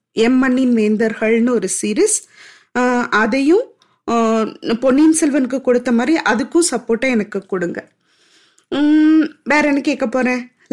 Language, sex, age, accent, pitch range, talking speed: Tamil, female, 20-39, native, 235-320 Hz, 100 wpm